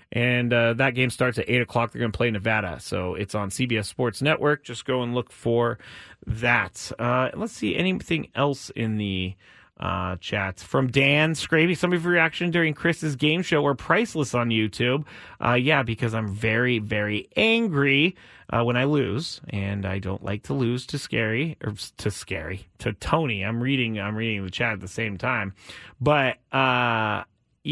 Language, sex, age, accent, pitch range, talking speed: English, male, 30-49, American, 115-170 Hz, 185 wpm